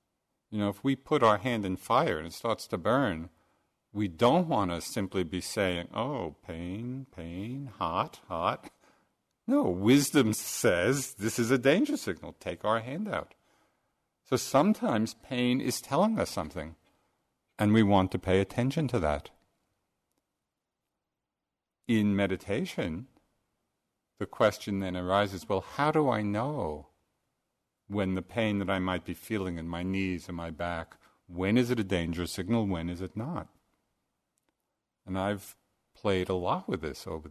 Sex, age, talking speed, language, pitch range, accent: male, 50-69, 155 wpm, English, 90-120 Hz, American